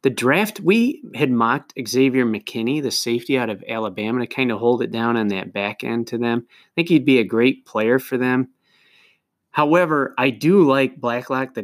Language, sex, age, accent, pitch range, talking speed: English, male, 30-49, American, 110-135 Hz, 200 wpm